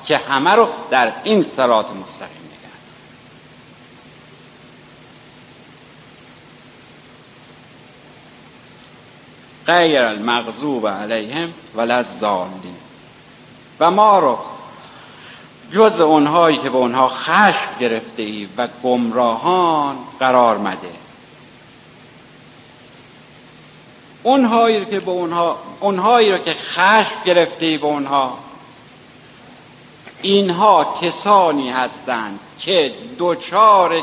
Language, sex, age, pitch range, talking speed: Persian, male, 60-79, 135-200 Hz, 75 wpm